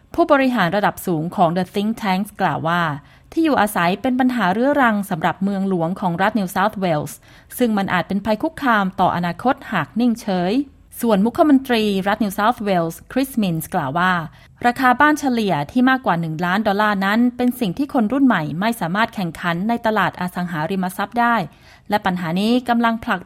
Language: Thai